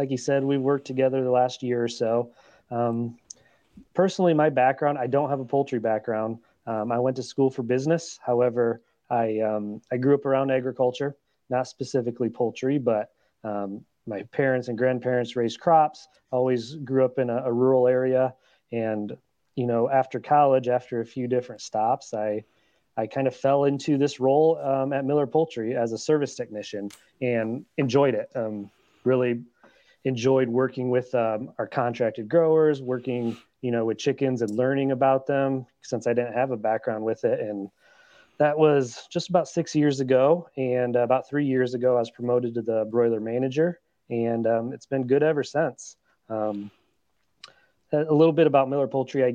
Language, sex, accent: English, male, American